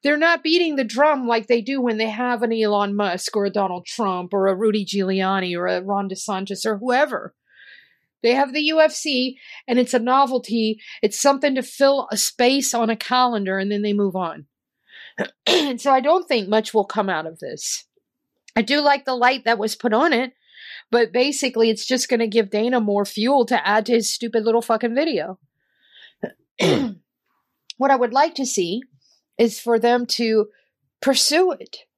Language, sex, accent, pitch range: English, female, American, 215-285 Hz